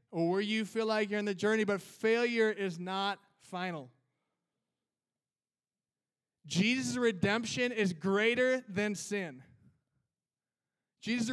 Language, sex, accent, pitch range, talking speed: English, male, American, 180-210 Hz, 110 wpm